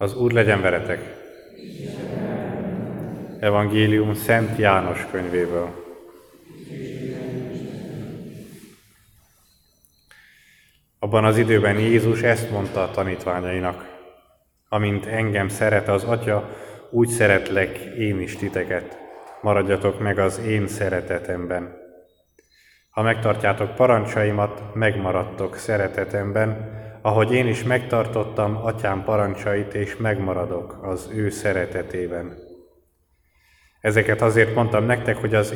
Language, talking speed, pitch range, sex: Hungarian, 90 wpm, 95-110 Hz, male